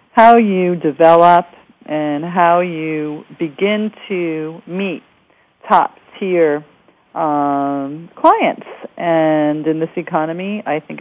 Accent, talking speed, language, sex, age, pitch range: American, 105 wpm, English, female, 40-59, 165-220 Hz